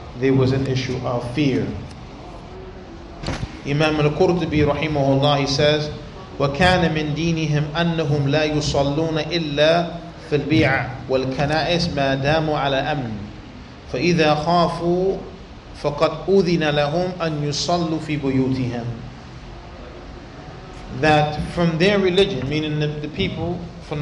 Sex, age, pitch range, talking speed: male, 30-49, 145-175 Hz, 105 wpm